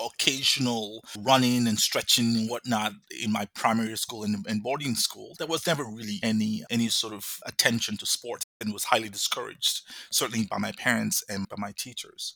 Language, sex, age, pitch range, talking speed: English, male, 30-49, 105-135 Hz, 180 wpm